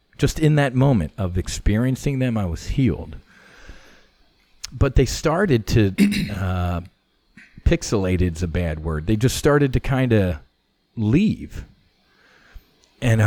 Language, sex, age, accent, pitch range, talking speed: English, male, 40-59, American, 85-115 Hz, 125 wpm